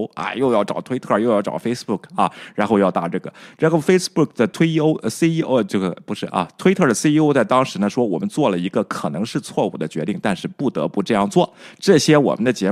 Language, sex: Chinese, male